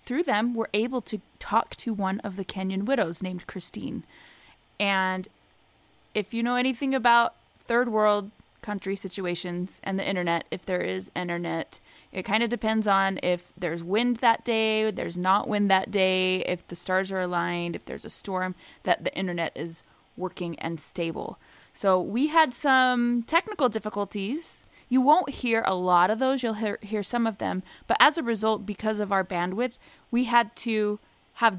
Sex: female